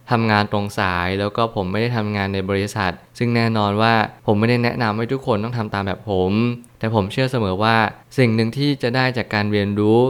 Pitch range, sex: 100-120 Hz, male